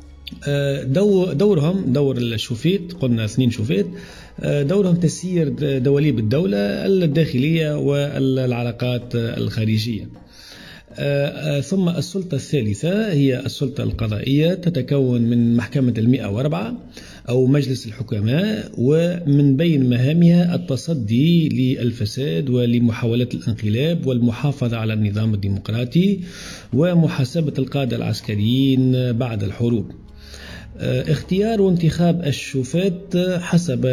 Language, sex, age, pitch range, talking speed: Arabic, male, 40-59, 120-145 Hz, 85 wpm